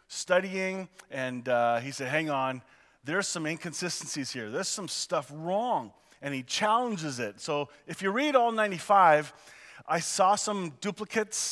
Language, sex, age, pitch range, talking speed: English, male, 40-59, 150-190 Hz, 150 wpm